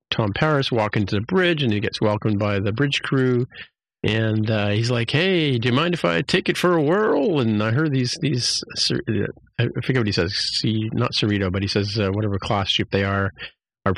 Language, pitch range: English, 105-140 Hz